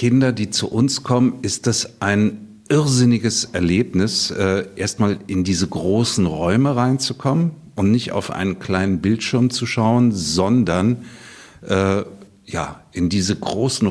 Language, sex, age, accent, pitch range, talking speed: German, male, 60-79, German, 95-120 Hz, 135 wpm